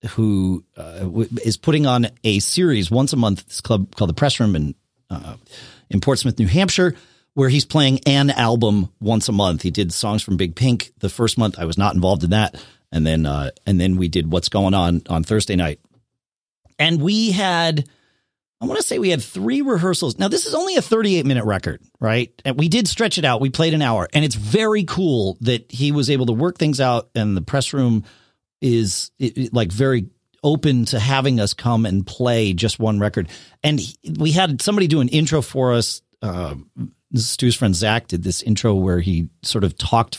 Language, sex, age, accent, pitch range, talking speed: English, male, 40-59, American, 100-140 Hz, 205 wpm